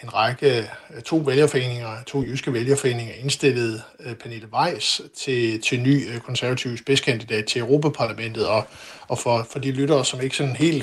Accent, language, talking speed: native, Danish, 150 wpm